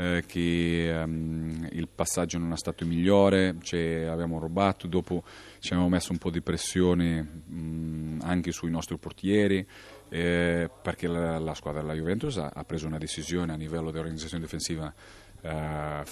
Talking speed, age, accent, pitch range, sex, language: 155 wpm, 40-59, native, 80-95 Hz, male, Italian